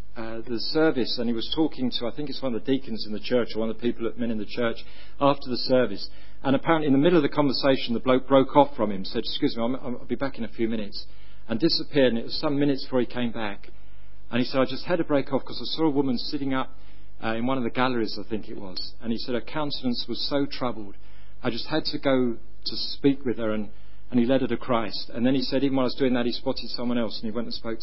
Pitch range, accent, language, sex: 120-195 Hz, British, English, male